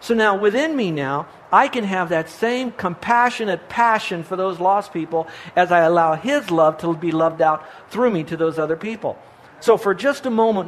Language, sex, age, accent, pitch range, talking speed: English, male, 60-79, American, 155-205 Hz, 200 wpm